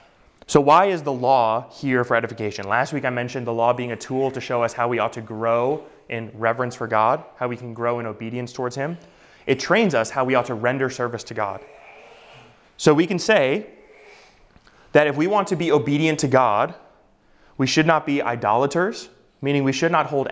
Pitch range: 120-145 Hz